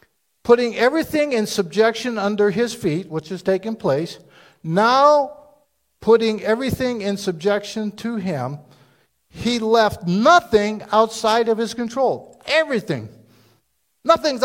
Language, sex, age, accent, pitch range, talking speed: English, male, 50-69, American, 160-230 Hz, 110 wpm